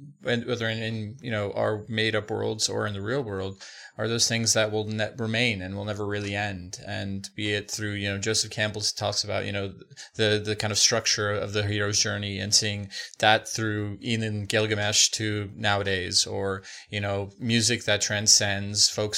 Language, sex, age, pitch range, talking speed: English, male, 20-39, 105-120 Hz, 195 wpm